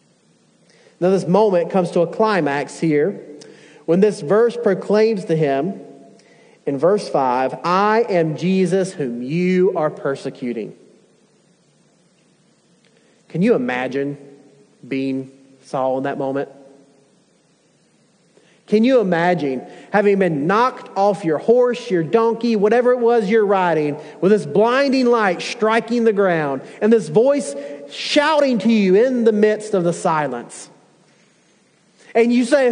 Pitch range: 150-225 Hz